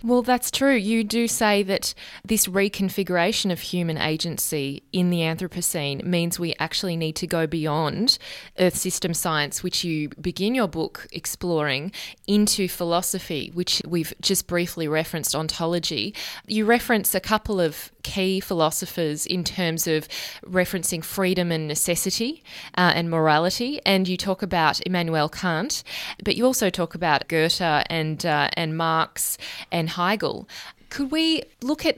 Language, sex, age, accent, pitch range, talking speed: English, female, 20-39, Australian, 160-195 Hz, 145 wpm